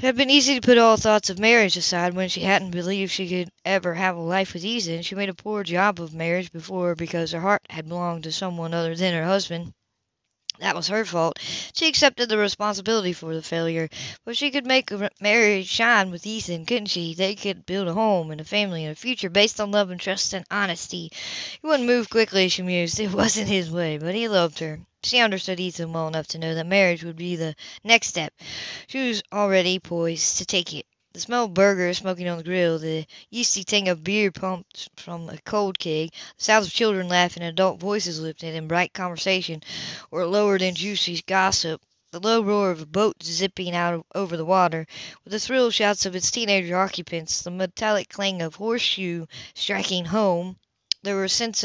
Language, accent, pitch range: English, American, 170-205 Hz